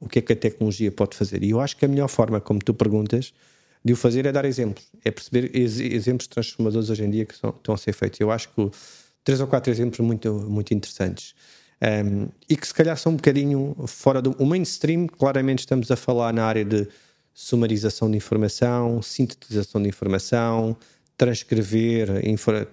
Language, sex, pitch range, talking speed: Portuguese, male, 105-115 Hz, 195 wpm